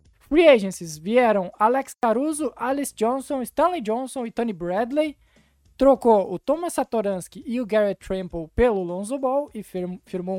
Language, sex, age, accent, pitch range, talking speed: Portuguese, male, 20-39, Brazilian, 190-260 Hz, 140 wpm